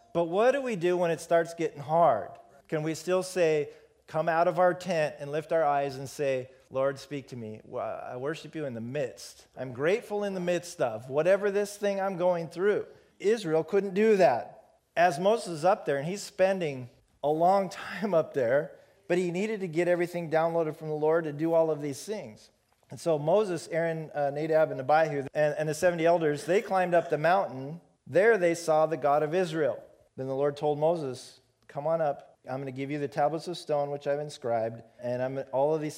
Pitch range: 140-175 Hz